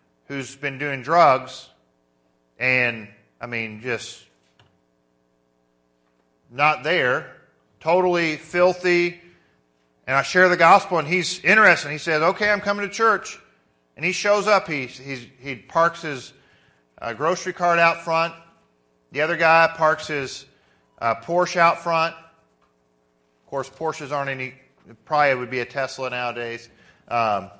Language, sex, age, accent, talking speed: English, male, 40-59, American, 135 wpm